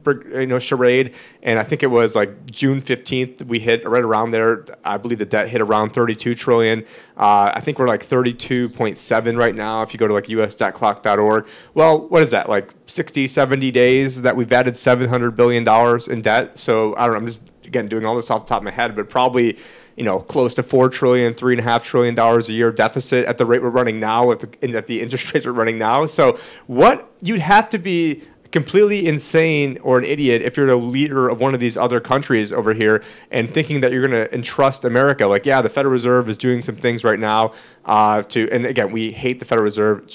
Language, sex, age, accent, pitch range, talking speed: English, male, 30-49, American, 115-140 Hz, 220 wpm